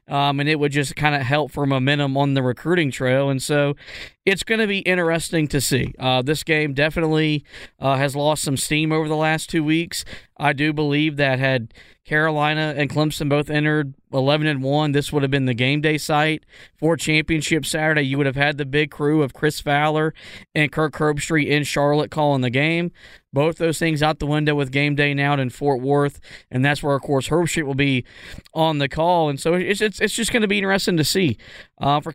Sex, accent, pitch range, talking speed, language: male, American, 140-160 Hz, 220 wpm, English